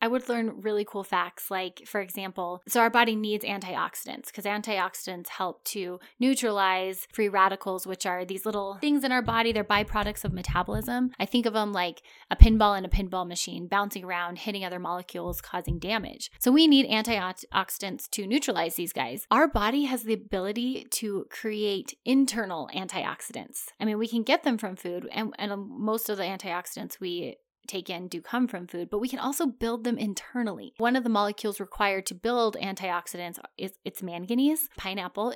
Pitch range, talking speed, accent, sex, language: 190-245 Hz, 185 wpm, American, female, English